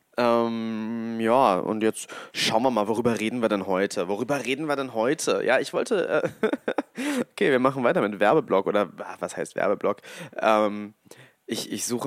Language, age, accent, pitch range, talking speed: German, 20-39, German, 115-140 Hz, 180 wpm